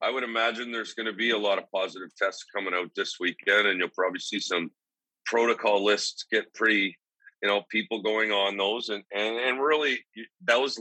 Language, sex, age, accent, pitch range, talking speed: English, male, 40-59, American, 100-115 Hz, 200 wpm